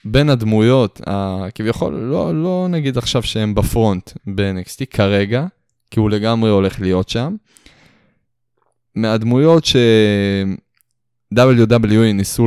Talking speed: 95 wpm